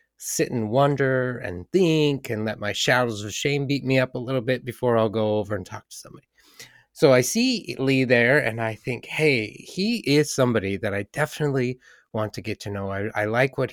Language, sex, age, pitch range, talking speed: English, male, 30-49, 105-135 Hz, 215 wpm